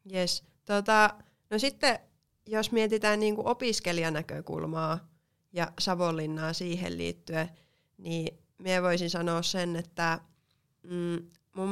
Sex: female